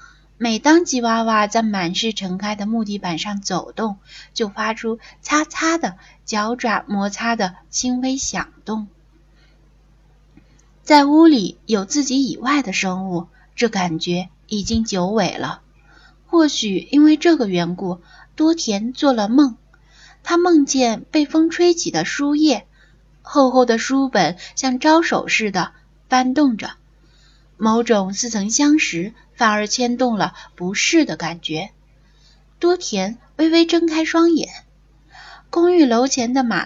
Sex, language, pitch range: female, Chinese, 180-270 Hz